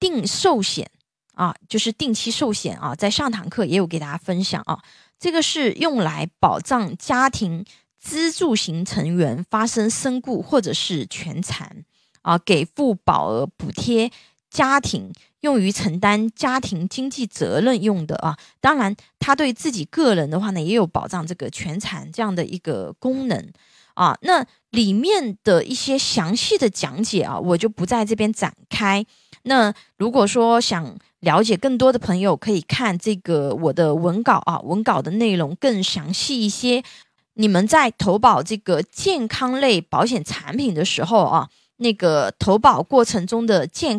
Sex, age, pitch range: female, 20-39, 180-255 Hz